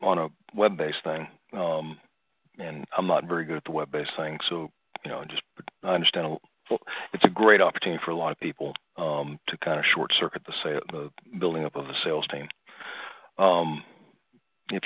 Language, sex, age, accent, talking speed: English, male, 40-59, American, 190 wpm